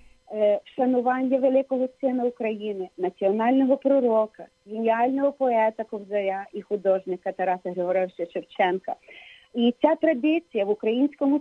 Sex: female